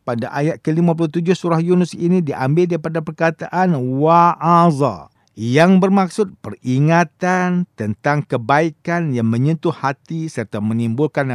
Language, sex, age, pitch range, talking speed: English, male, 50-69, 125-175 Hz, 105 wpm